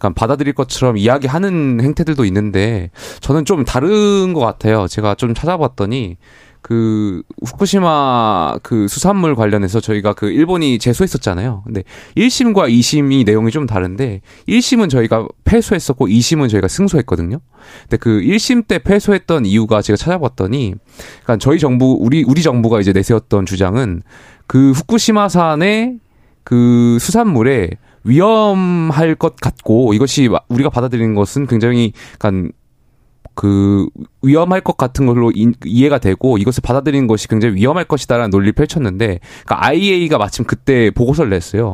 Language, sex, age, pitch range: Korean, male, 20-39, 110-150 Hz